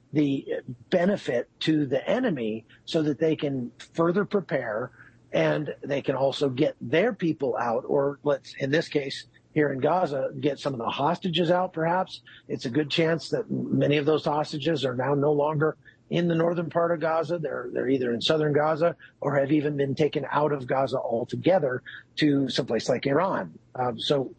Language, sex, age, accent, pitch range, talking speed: English, male, 50-69, American, 140-170 Hz, 180 wpm